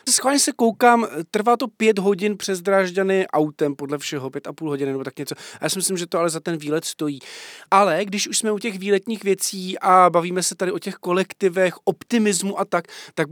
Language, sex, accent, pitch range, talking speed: Czech, male, native, 155-200 Hz, 215 wpm